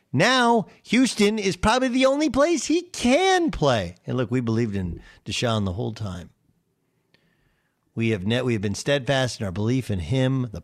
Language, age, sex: English, 50-69, male